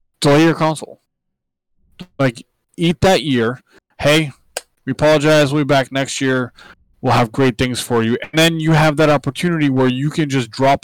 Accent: American